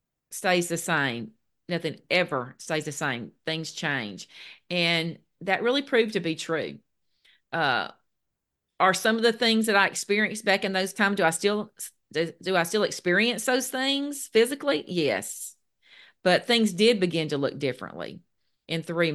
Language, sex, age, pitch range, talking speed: English, female, 40-59, 160-200 Hz, 160 wpm